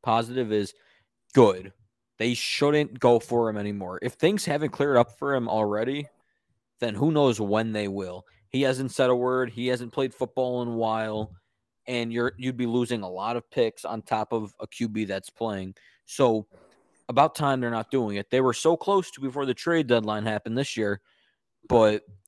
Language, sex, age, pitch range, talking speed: English, male, 20-39, 105-135 Hz, 195 wpm